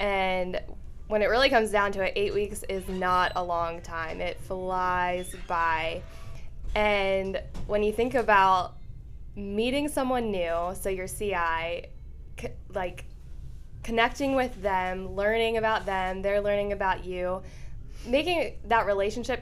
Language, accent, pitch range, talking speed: English, American, 180-210 Hz, 135 wpm